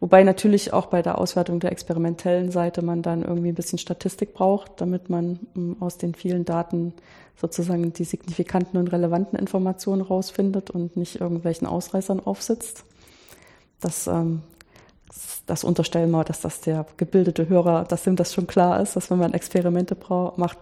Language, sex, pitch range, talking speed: German, female, 165-180 Hz, 155 wpm